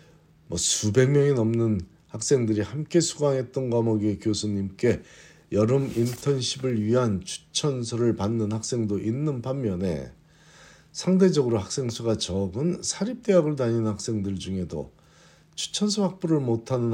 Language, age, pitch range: Korean, 50-69, 100-145 Hz